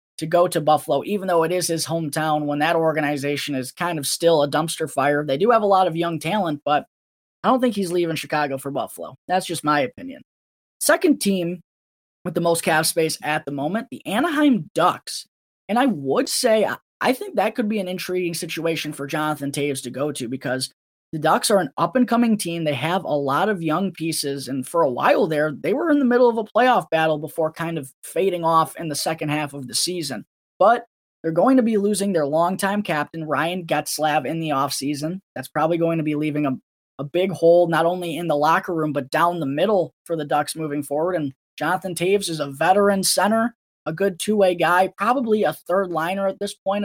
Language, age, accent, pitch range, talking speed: English, 20-39, American, 150-190 Hz, 215 wpm